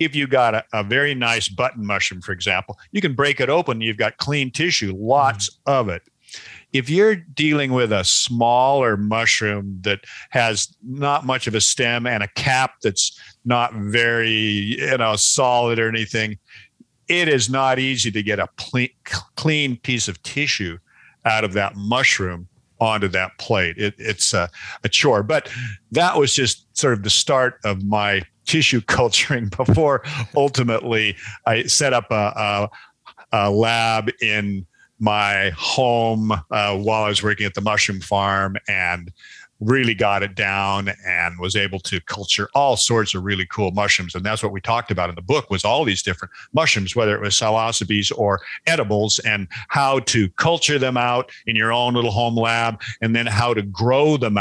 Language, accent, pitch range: English, American, 100-125 Hz